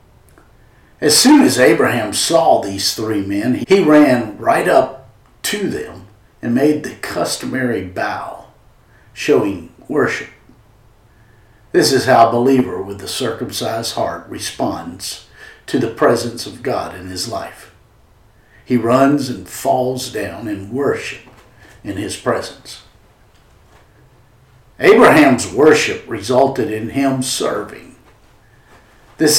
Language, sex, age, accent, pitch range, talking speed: English, male, 50-69, American, 110-140 Hz, 115 wpm